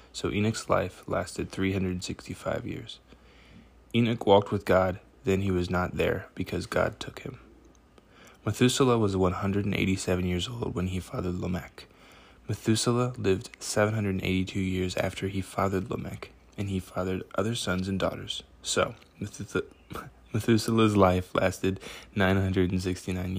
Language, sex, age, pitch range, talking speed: English, male, 20-39, 90-100 Hz, 125 wpm